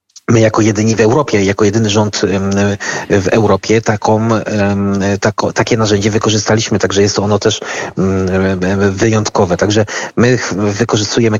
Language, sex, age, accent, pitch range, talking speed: Polish, male, 40-59, native, 100-110 Hz, 110 wpm